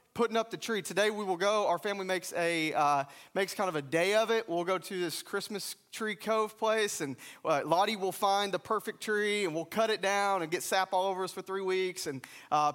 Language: English